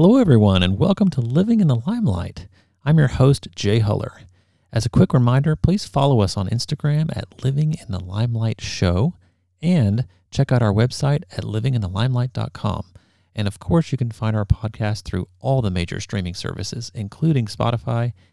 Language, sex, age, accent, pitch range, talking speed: English, male, 40-59, American, 95-130 Hz, 170 wpm